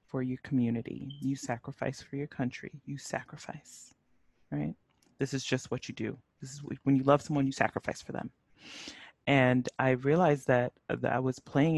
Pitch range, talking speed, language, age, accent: 120-145 Hz, 175 wpm, English, 30-49, American